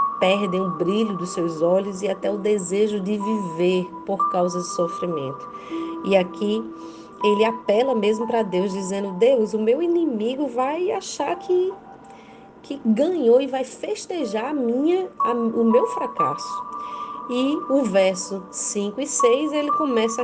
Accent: Brazilian